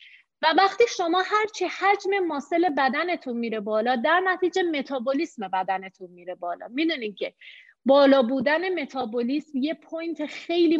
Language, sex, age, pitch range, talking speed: Persian, female, 30-49, 235-310 Hz, 130 wpm